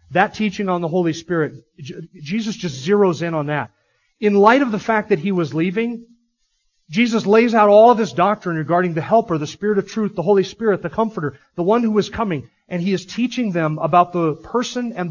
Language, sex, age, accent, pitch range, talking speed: English, male, 40-59, American, 170-220 Hz, 215 wpm